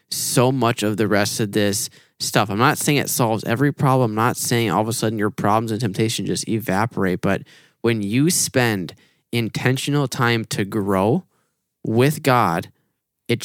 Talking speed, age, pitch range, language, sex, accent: 175 wpm, 10-29, 105-125 Hz, English, male, American